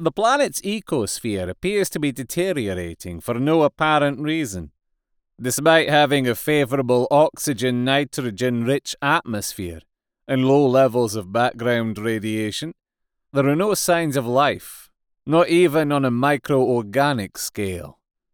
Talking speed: 115 wpm